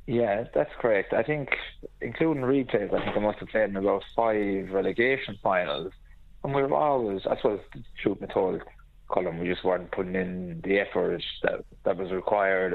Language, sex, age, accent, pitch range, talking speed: English, male, 20-39, British, 90-105 Hz, 185 wpm